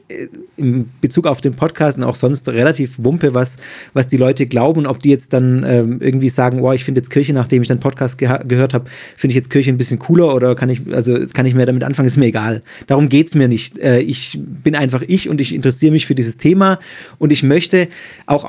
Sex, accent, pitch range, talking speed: male, German, 130-160 Hz, 240 wpm